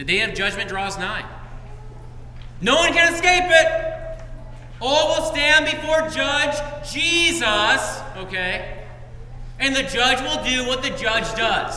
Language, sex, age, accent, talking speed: English, male, 40-59, American, 140 wpm